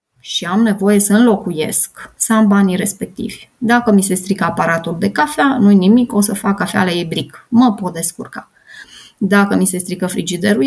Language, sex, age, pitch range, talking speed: Romanian, female, 20-39, 180-220 Hz, 180 wpm